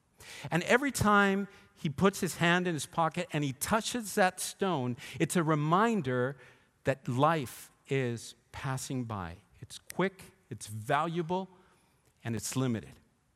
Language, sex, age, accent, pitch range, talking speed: English, male, 50-69, American, 125-185 Hz, 135 wpm